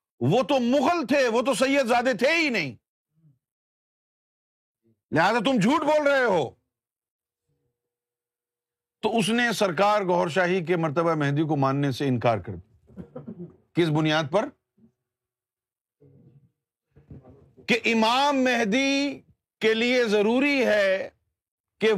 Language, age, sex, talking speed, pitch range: Urdu, 50-69, male, 115 wpm, 135-215 Hz